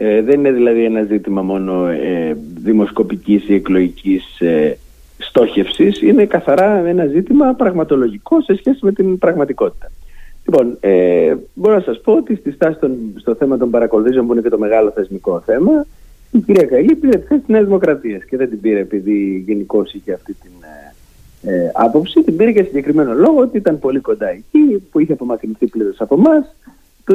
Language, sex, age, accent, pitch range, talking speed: Greek, male, 30-49, native, 115-195 Hz, 170 wpm